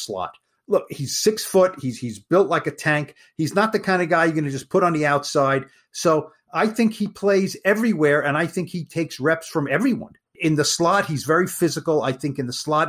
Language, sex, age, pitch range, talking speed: English, male, 50-69, 140-185 Hz, 235 wpm